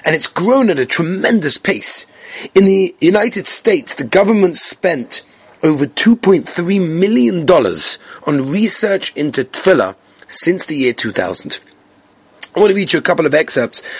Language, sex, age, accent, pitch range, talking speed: English, male, 30-49, British, 145-220 Hz, 145 wpm